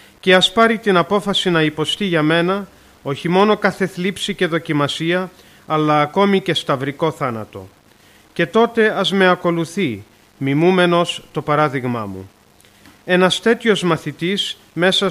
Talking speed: 130 wpm